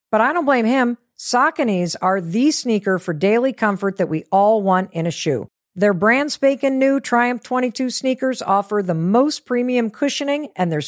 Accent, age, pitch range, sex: American, 50-69, 185-255 Hz, female